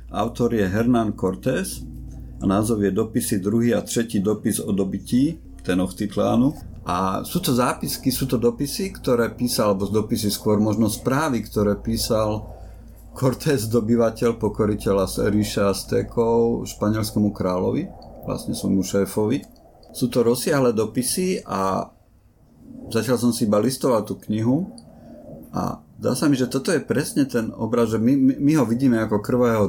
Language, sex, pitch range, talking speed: Slovak, male, 100-120 Hz, 145 wpm